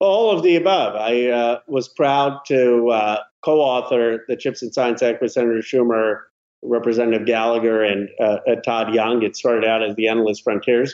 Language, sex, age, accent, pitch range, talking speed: English, male, 50-69, American, 120-150 Hz, 175 wpm